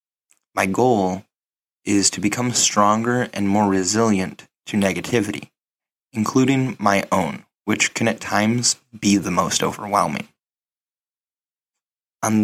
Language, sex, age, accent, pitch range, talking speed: English, male, 20-39, American, 100-120 Hz, 110 wpm